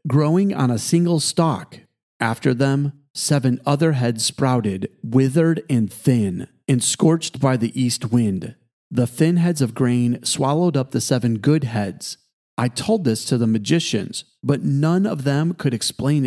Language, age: English, 30-49